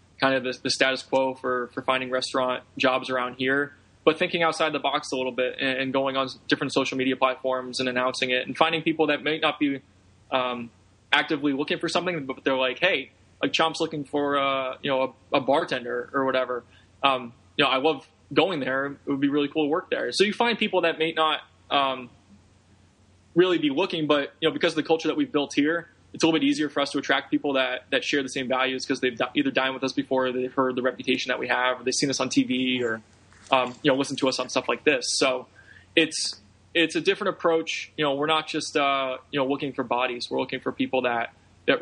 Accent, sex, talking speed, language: American, male, 240 wpm, English